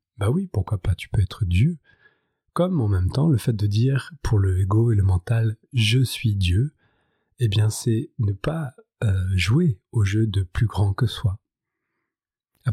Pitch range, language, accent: 100-120 Hz, French, French